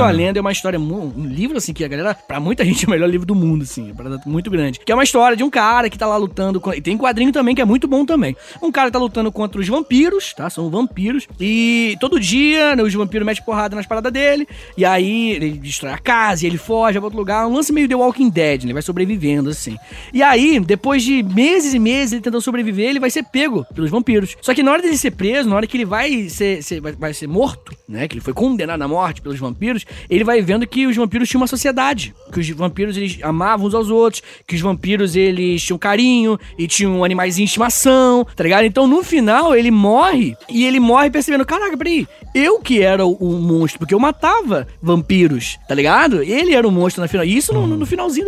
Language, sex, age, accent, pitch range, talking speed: Portuguese, male, 20-39, Brazilian, 175-260 Hz, 240 wpm